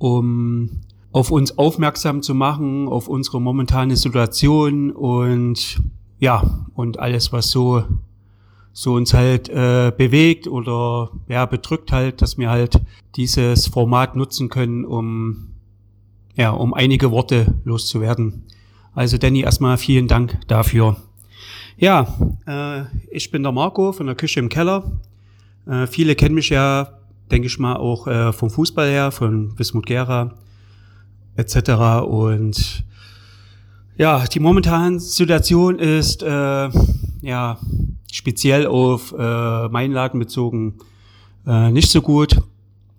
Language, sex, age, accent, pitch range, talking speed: German, male, 40-59, German, 100-130 Hz, 125 wpm